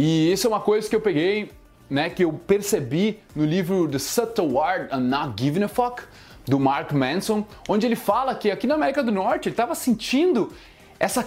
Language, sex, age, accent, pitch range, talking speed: Portuguese, male, 20-39, Brazilian, 185-250 Hz, 200 wpm